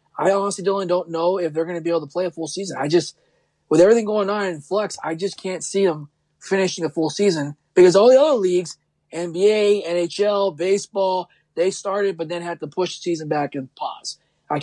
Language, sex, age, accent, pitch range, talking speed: English, male, 20-39, American, 155-195 Hz, 220 wpm